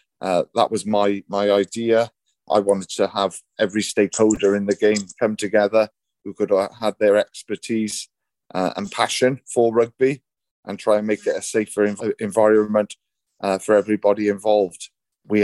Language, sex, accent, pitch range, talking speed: English, male, British, 100-110 Hz, 165 wpm